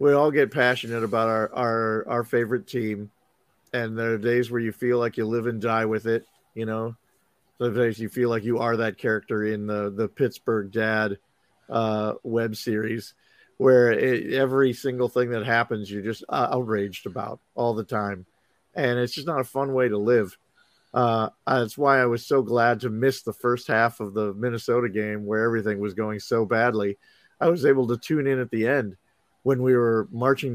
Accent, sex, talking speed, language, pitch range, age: American, male, 200 wpm, English, 110-125 Hz, 50-69